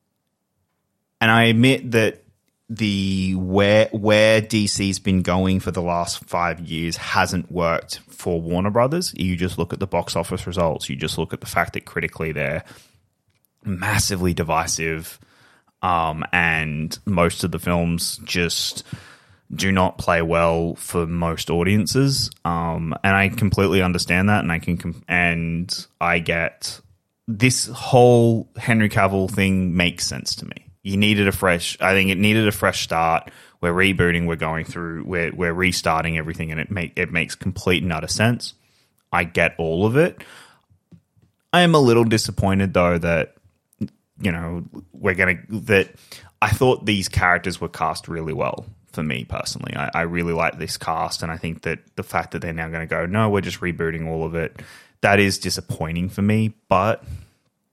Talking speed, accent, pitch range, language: 170 wpm, Australian, 85-105 Hz, English